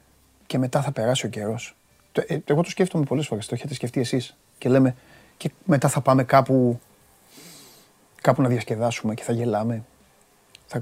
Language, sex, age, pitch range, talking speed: Greek, male, 30-49, 110-135 Hz, 160 wpm